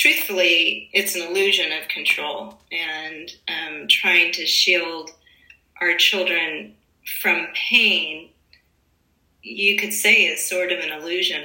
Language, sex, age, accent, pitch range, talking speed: English, female, 30-49, American, 175-215 Hz, 120 wpm